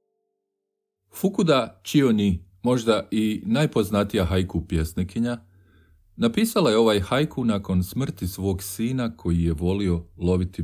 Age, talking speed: 40-59, 105 wpm